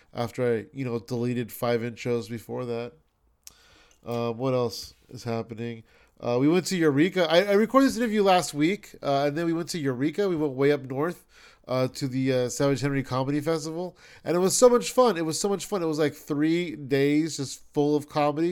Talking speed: 215 wpm